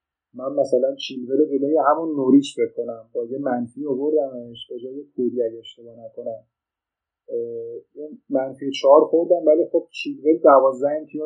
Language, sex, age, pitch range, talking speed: Persian, male, 30-49, 125-155 Hz, 130 wpm